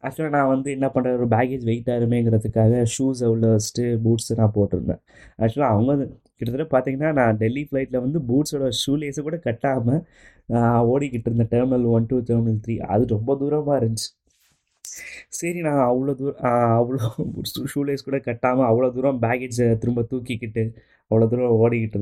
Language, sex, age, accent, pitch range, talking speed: Tamil, male, 20-39, native, 110-135 Hz, 145 wpm